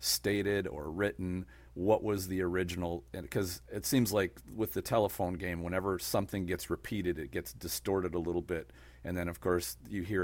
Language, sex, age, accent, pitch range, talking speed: English, male, 40-59, American, 80-100 Hz, 180 wpm